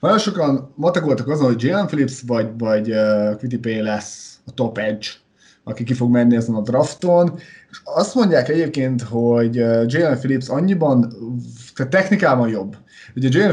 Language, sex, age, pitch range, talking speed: Hungarian, male, 20-39, 120-165 Hz, 145 wpm